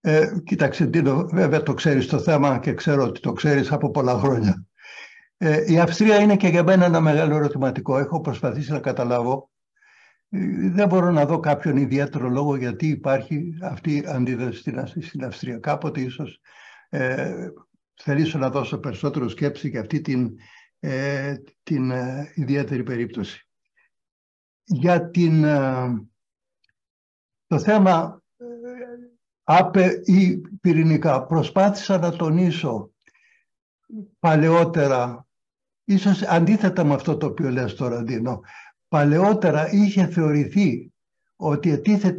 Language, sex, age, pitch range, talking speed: Greek, male, 60-79, 135-185 Hz, 120 wpm